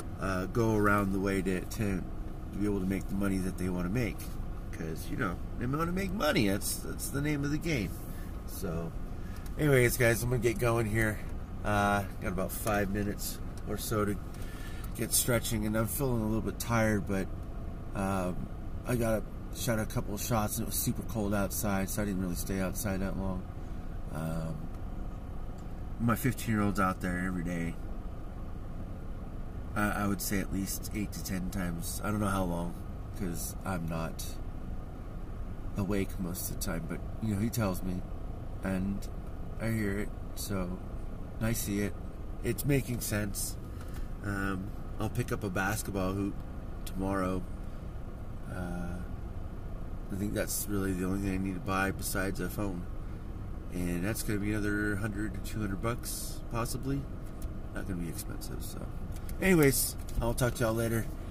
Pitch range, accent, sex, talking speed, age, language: 90-105 Hz, American, male, 170 wpm, 30-49, English